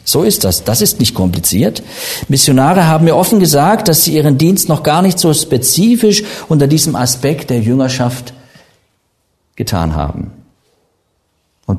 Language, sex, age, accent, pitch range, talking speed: German, male, 50-69, German, 105-170 Hz, 150 wpm